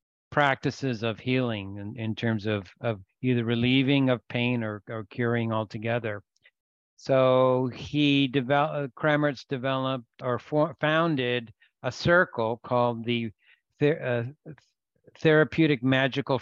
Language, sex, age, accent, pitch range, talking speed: English, male, 60-79, American, 115-140 Hz, 115 wpm